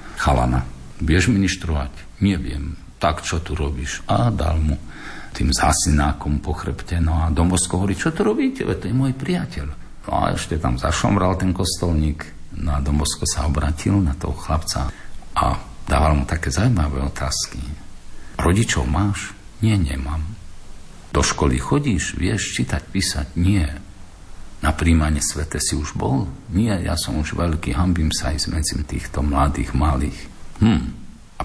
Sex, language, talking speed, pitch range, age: male, Slovak, 145 wpm, 70-90 Hz, 50-69